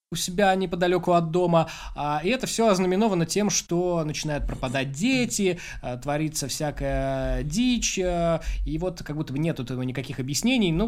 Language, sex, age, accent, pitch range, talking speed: Russian, male, 20-39, native, 135-180 Hz, 145 wpm